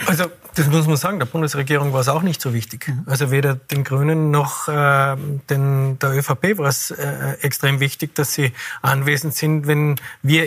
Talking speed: 190 wpm